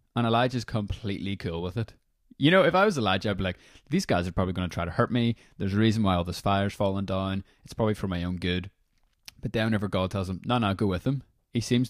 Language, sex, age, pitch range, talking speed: English, male, 20-39, 90-110 Hz, 265 wpm